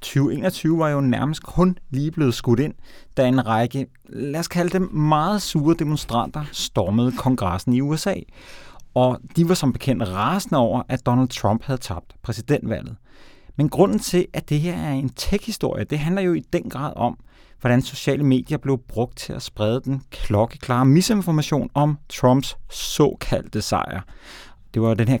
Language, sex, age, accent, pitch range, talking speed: Danish, male, 30-49, native, 115-150 Hz, 170 wpm